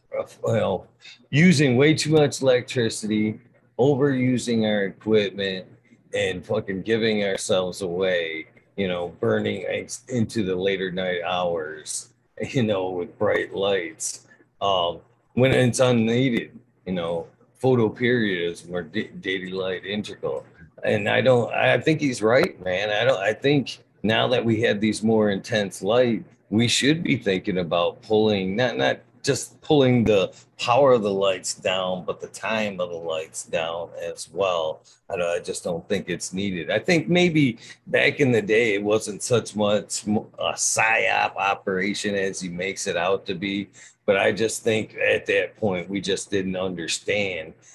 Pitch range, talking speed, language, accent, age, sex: 95-130 Hz, 155 wpm, English, American, 40-59, male